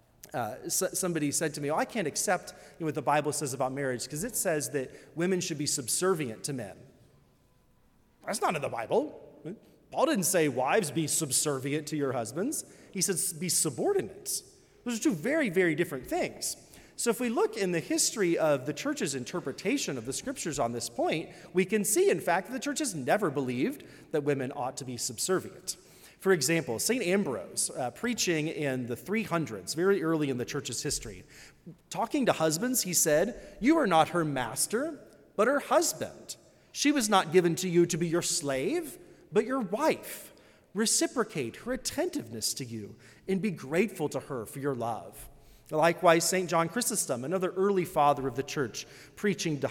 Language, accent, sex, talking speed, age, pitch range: English, American, male, 180 wpm, 30-49, 140-200 Hz